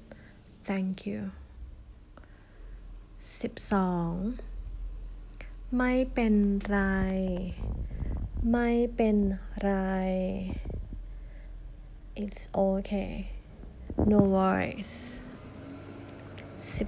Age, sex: 30-49, female